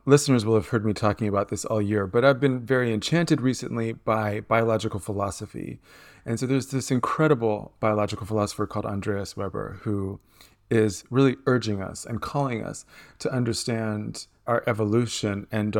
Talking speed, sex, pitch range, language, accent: 160 wpm, male, 105-125 Hz, English, American